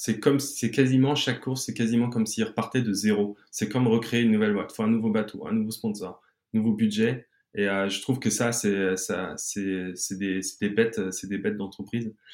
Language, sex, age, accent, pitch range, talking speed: French, male, 20-39, French, 100-125 Hz, 230 wpm